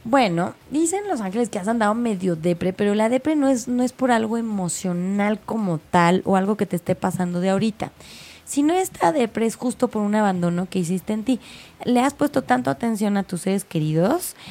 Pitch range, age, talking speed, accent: 185-235 Hz, 20-39, 210 wpm, Mexican